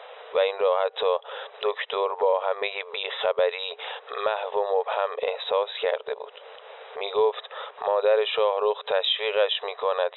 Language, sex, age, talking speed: Persian, male, 20-39, 125 wpm